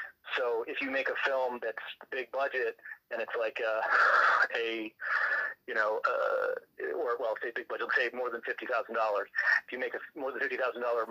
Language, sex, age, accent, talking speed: English, male, 30-49, American, 180 wpm